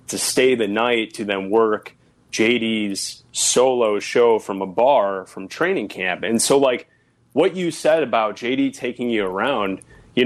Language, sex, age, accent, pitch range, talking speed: English, male, 30-49, American, 110-150 Hz, 165 wpm